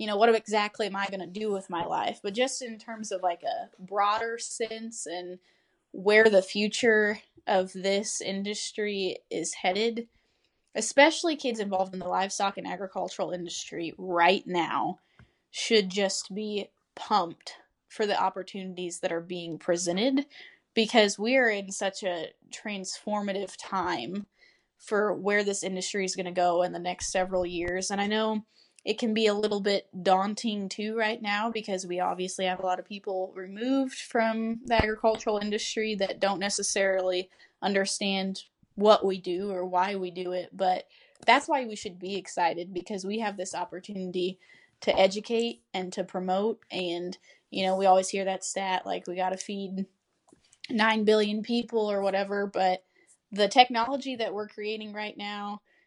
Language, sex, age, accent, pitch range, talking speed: English, female, 10-29, American, 185-215 Hz, 165 wpm